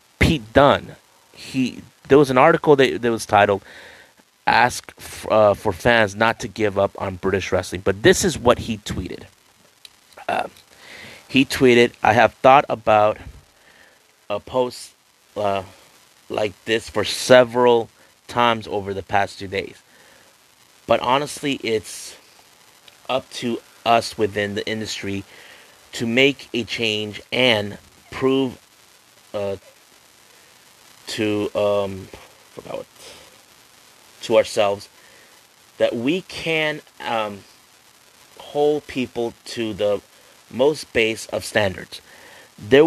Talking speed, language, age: 115 wpm, English, 30-49